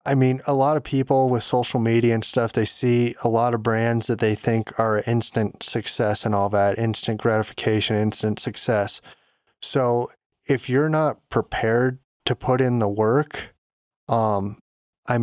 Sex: male